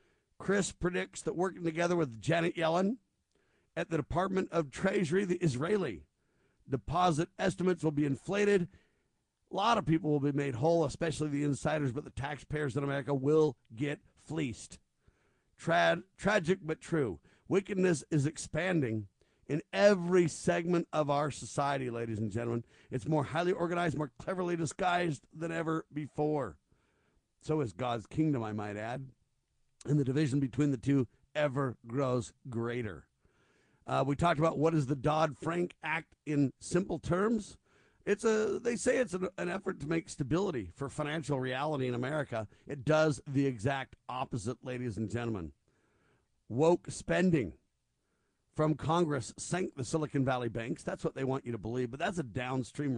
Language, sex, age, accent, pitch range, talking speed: English, male, 50-69, American, 130-175 Hz, 155 wpm